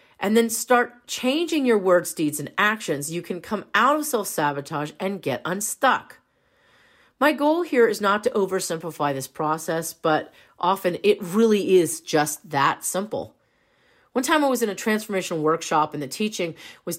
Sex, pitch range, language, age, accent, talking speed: female, 155-215 Hz, English, 40-59, American, 165 wpm